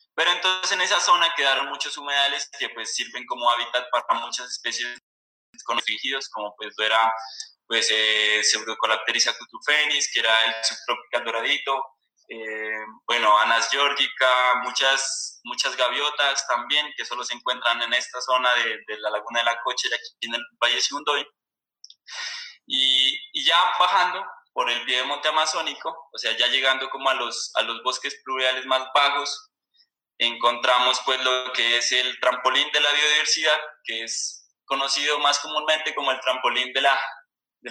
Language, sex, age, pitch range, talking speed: Spanish, male, 20-39, 120-150 Hz, 160 wpm